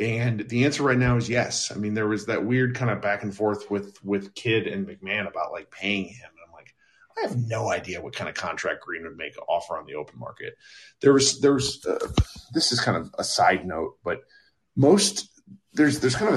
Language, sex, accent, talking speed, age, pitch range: English, male, American, 235 wpm, 40-59, 100-130 Hz